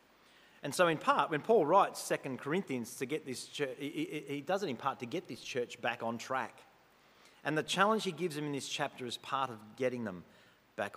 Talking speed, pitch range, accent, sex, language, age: 220 wpm, 115-155 Hz, Australian, male, English, 40-59